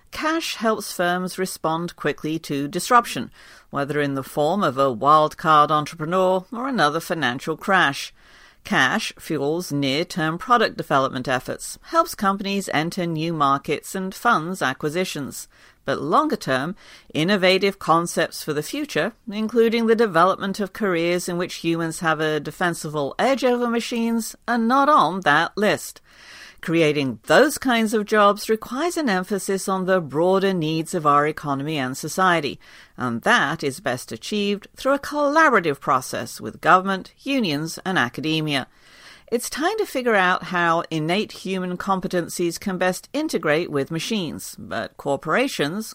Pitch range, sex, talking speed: 155-220 Hz, female, 140 wpm